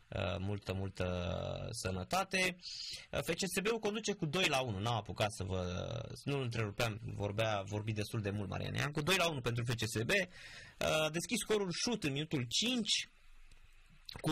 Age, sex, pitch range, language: 20-39, male, 110-150 Hz, Romanian